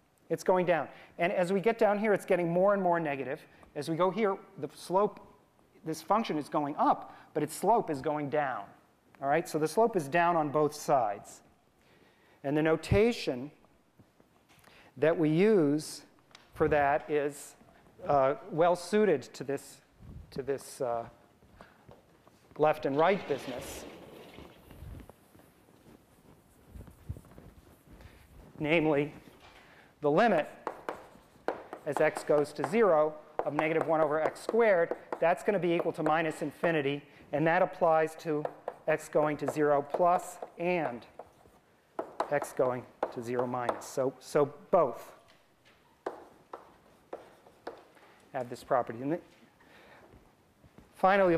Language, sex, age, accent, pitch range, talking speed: English, male, 40-59, American, 145-175 Hz, 125 wpm